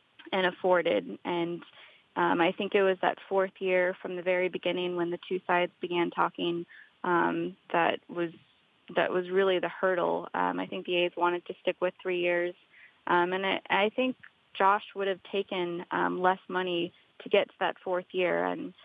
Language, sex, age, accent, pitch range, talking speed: English, female, 20-39, American, 175-195 Hz, 190 wpm